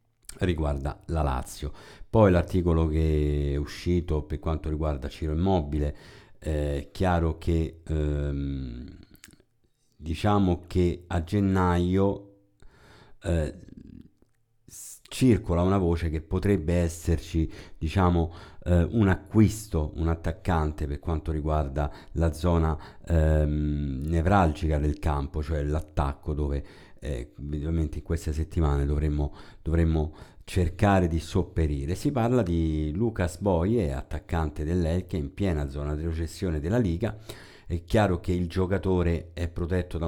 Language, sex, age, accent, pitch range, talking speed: Italian, male, 50-69, native, 75-95 Hz, 115 wpm